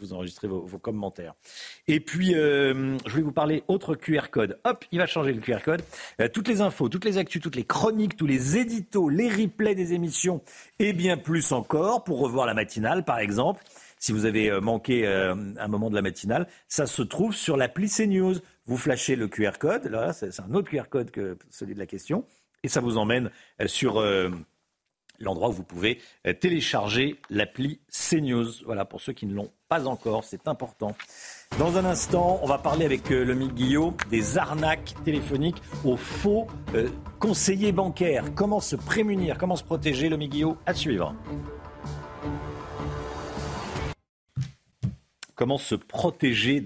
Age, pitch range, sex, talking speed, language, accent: 50-69, 105-170 Hz, male, 175 wpm, French, French